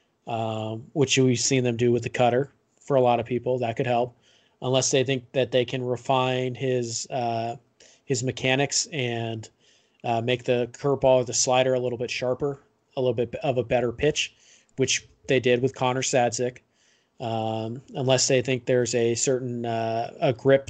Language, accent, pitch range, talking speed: English, American, 120-130 Hz, 185 wpm